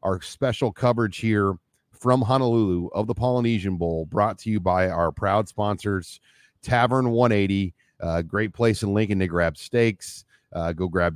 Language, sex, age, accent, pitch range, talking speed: English, male, 40-59, American, 90-115 Hz, 160 wpm